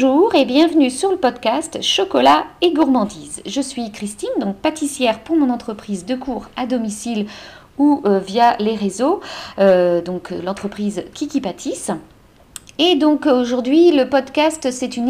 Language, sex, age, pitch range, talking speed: French, female, 50-69, 195-260 Hz, 150 wpm